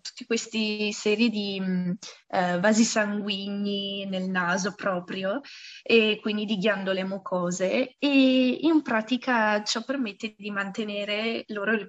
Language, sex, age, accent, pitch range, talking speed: Italian, female, 20-39, native, 195-235 Hz, 115 wpm